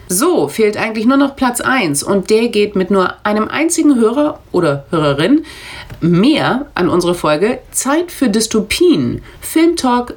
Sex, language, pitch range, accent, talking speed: female, German, 170-250 Hz, German, 155 wpm